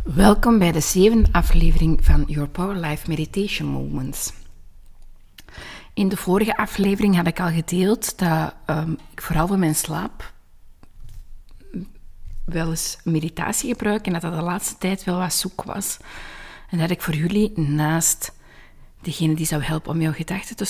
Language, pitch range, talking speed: Dutch, 155-195 Hz, 155 wpm